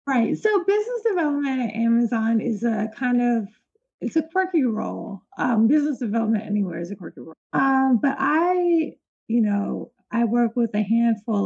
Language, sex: English, female